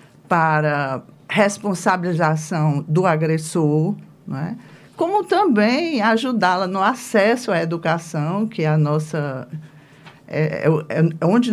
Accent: Brazilian